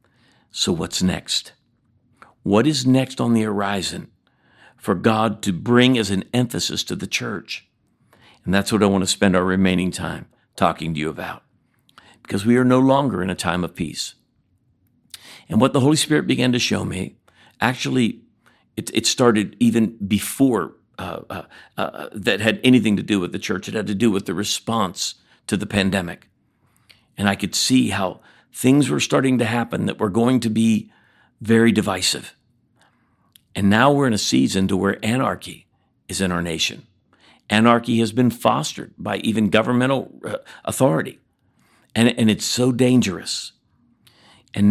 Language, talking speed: English, 165 wpm